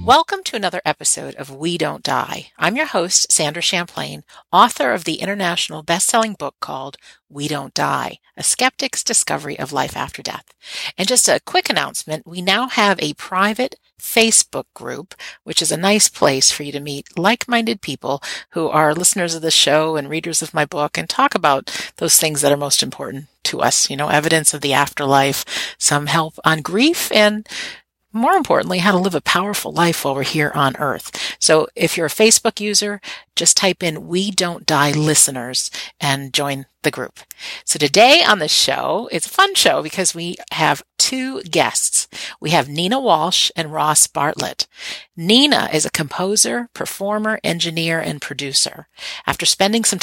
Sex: female